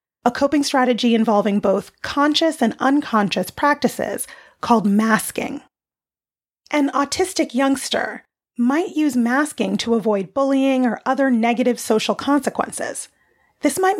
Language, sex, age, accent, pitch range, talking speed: English, female, 30-49, American, 225-275 Hz, 115 wpm